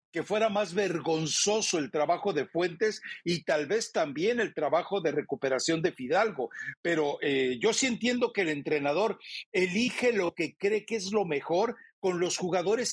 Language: Spanish